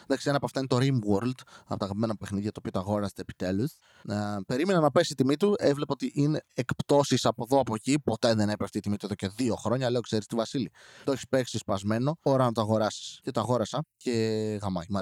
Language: Greek